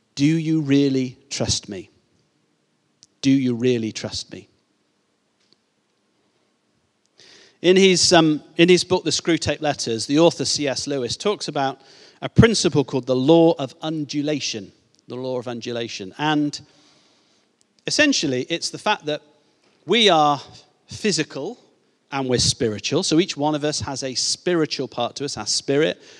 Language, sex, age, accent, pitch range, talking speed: English, male, 40-59, British, 135-195 Hz, 140 wpm